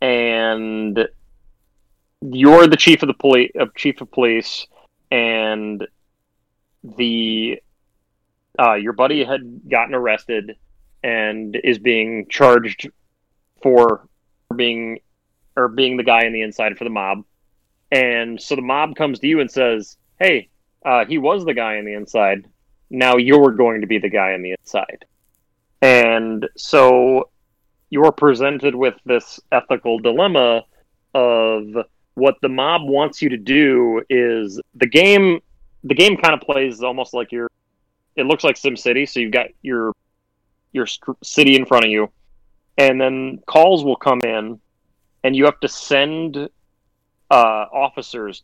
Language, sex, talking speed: English, male, 145 wpm